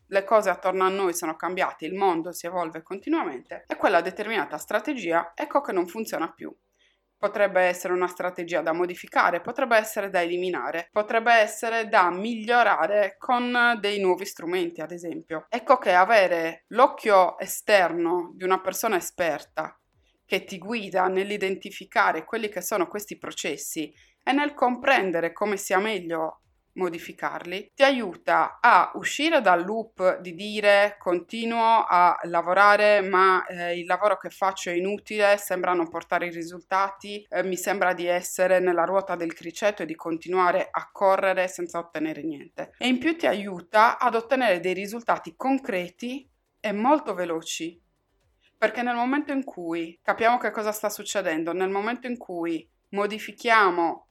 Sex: female